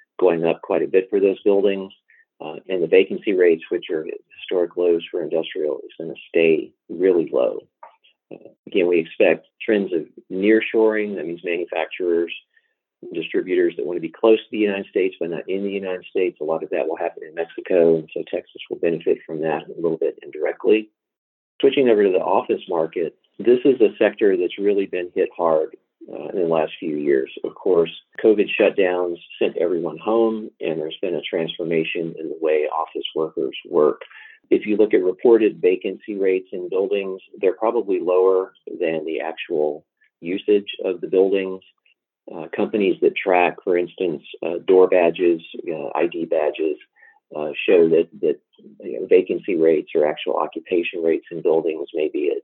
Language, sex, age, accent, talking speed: English, male, 40-59, American, 175 wpm